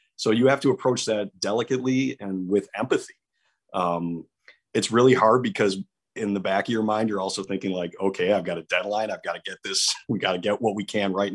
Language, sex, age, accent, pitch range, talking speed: English, male, 40-59, American, 90-120 Hz, 225 wpm